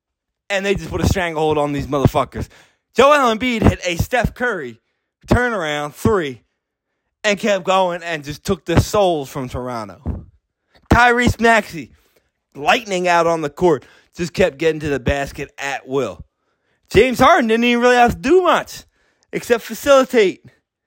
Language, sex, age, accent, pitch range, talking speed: English, male, 20-39, American, 155-235 Hz, 155 wpm